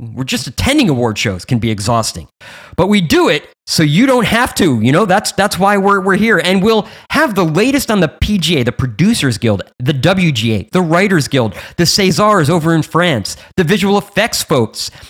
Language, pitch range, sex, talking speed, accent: English, 120-185 Hz, male, 200 wpm, American